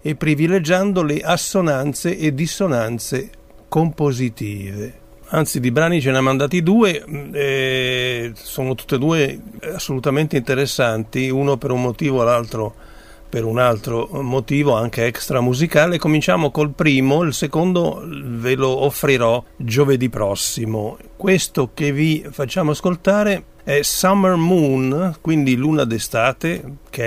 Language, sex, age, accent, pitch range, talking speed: Italian, male, 50-69, native, 120-155 Hz, 125 wpm